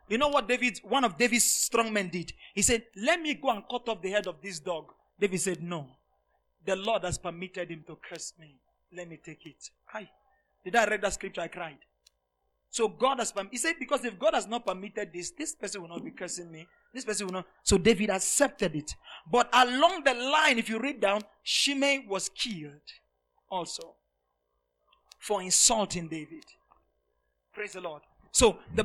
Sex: male